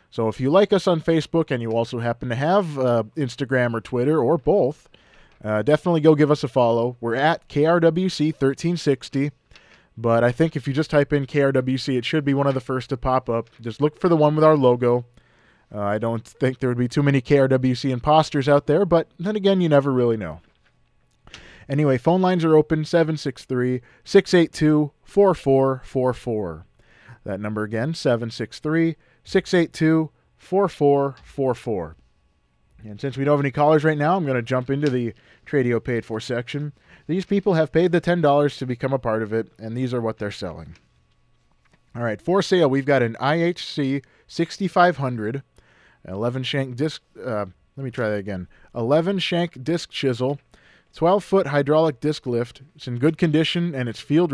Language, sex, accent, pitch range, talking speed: English, male, American, 120-155 Hz, 175 wpm